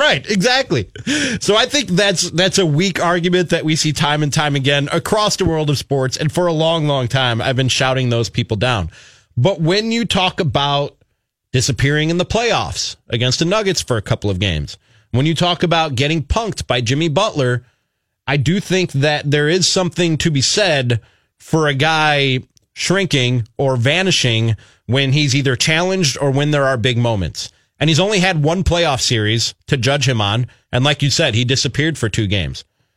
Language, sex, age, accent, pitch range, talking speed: English, male, 30-49, American, 125-160 Hz, 195 wpm